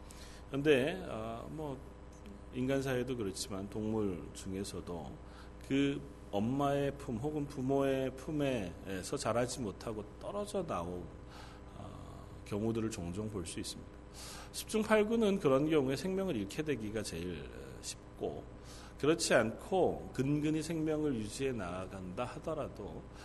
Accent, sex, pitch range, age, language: native, male, 100-130 Hz, 40-59, Korean